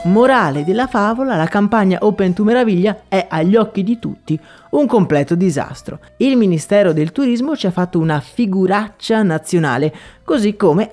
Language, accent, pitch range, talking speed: Italian, native, 160-230 Hz, 155 wpm